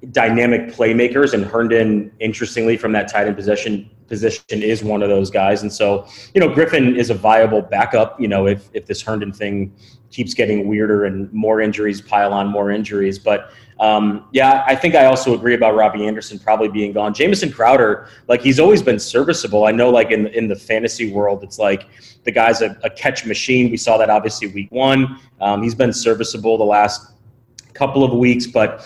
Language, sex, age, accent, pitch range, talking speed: English, male, 30-49, American, 100-120 Hz, 200 wpm